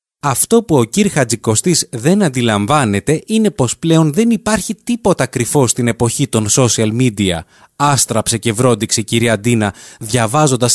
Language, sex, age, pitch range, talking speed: Greek, male, 20-39, 115-165 Hz, 140 wpm